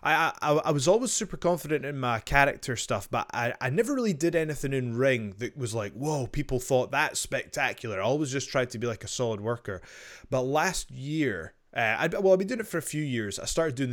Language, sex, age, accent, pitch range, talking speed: English, male, 20-39, British, 120-155 Hz, 235 wpm